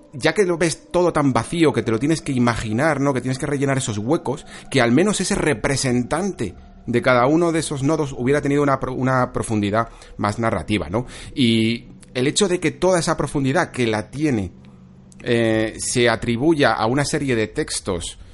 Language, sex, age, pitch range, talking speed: Spanish, male, 40-59, 105-135 Hz, 190 wpm